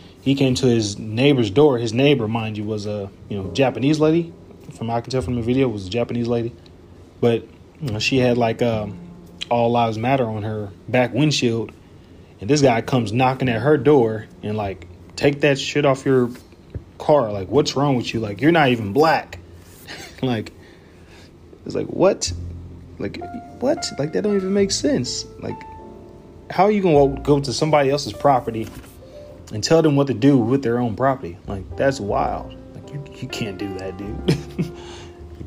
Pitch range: 90-130 Hz